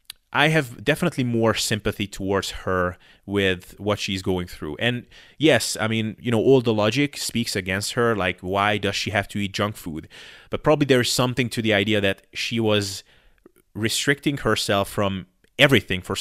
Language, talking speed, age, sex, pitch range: English, 180 wpm, 30-49, male, 95-120 Hz